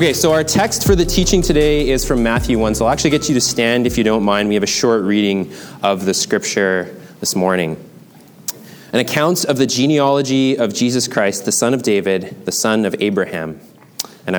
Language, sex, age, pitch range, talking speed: English, male, 20-39, 95-125 Hz, 210 wpm